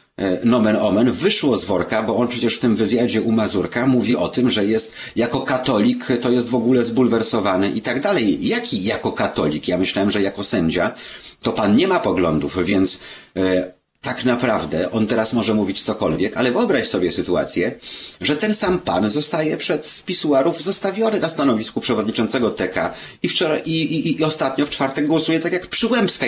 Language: Polish